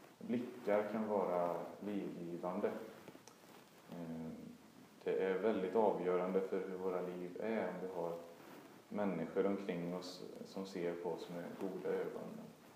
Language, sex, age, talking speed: Swedish, male, 30-49, 120 wpm